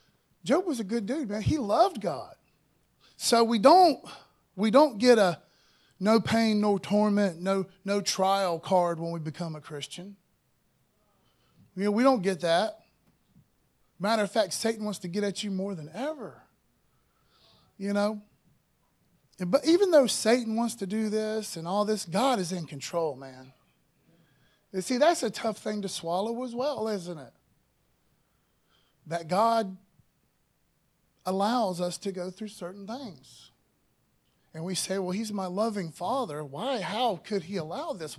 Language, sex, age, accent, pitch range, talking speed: English, male, 30-49, American, 165-220 Hz, 155 wpm